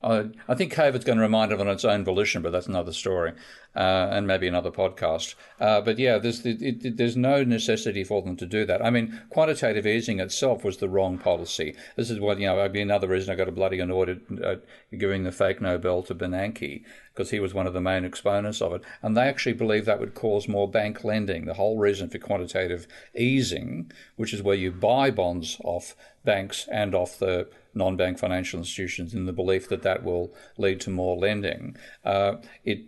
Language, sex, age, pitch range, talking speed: English, male, 50-69, 95-110 Hz, 210 wpm